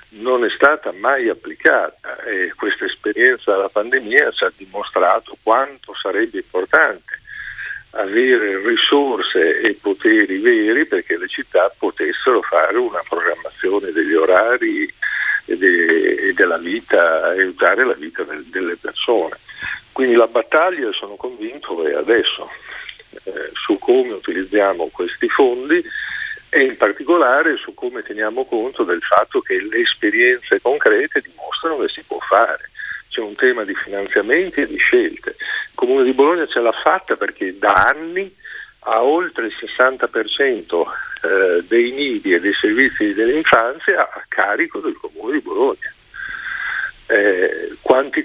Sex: male